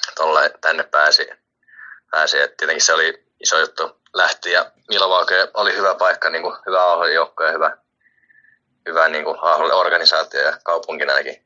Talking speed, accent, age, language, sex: 145 wpm, native, 20-39, Finnish, male